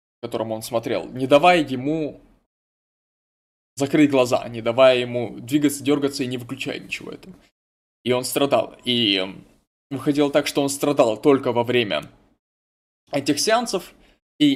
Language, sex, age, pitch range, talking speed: Russian, male, 20-39, 125-150 Hz, 135 wpm